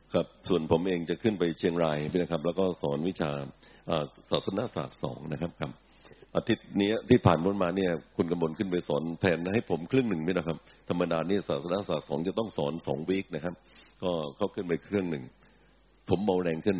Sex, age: male, 60-79